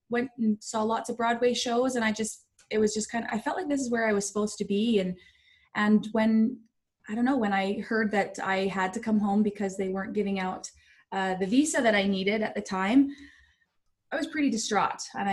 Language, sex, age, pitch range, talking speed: English, female, 20-39, 200-250 Hz, 235 wpm